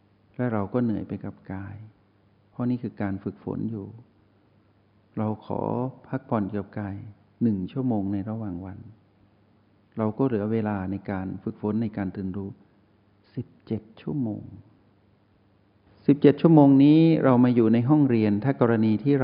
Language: Thai